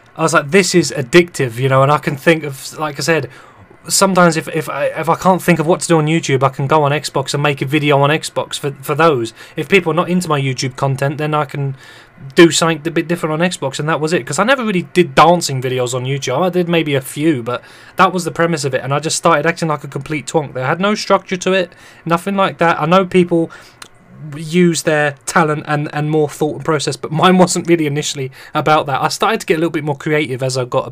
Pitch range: 140-175 Hz